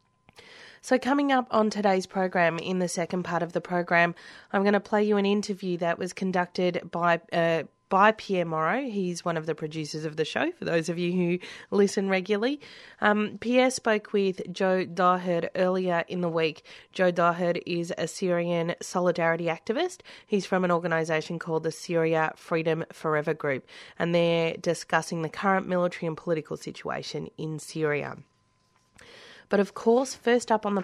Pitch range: 165-195 Hz